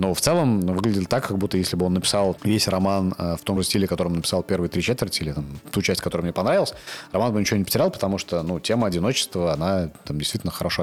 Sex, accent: male, native